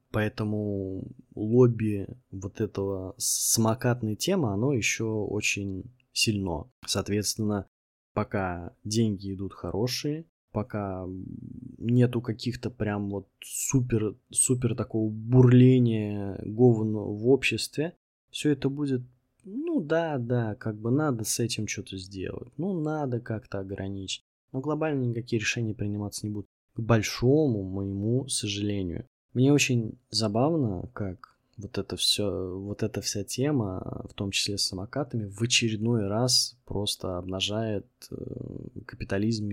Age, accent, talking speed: 20-39, native, 110 wpm